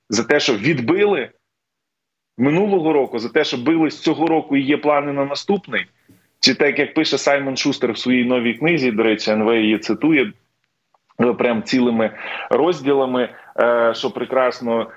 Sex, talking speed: male, 150 wpm